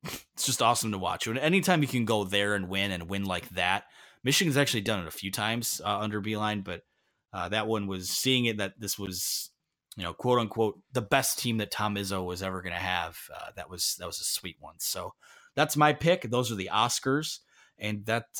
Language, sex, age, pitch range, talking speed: English, male, 20-39, 100-130 Hz, 220 wpm